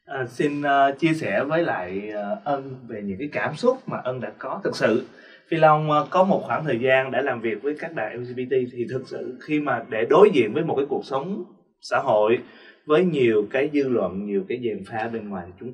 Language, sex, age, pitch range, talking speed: Vietnamese, male, 20-39, 115-160 Hz, 235 wpm